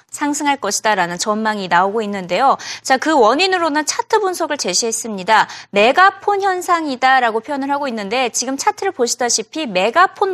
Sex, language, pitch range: female, Korean, 220-330 Hz